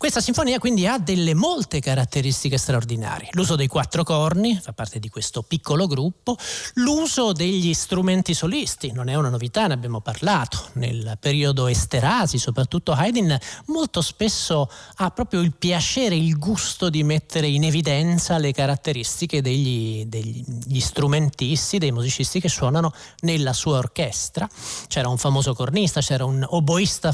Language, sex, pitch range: Italian, male, 130-180 Hz